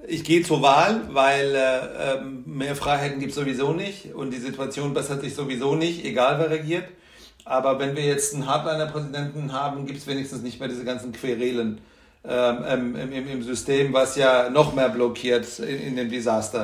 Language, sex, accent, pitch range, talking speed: German, male, German, 130-150 Hz, 185 wpm